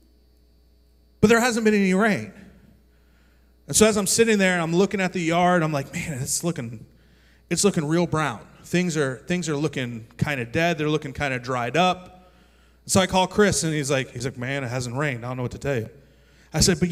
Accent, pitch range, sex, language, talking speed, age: American, 130-180 Hz, male, English, 225 wpm, 30-49